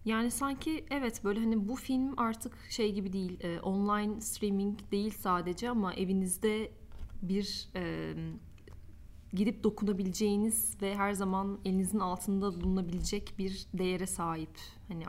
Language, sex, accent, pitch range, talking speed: Turkish, female, native, 175-205 Hz, 125 wpm